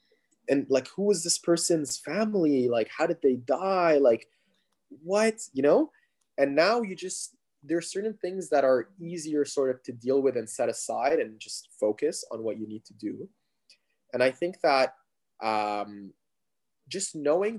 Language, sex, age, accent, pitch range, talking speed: English, male, 20-39, Canadian, 120-180 Hz, 175 wpm